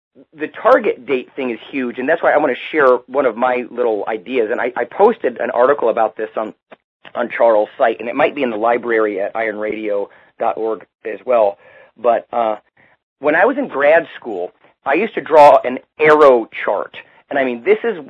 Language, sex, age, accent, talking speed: English, male, 40-59, American, 200 wpm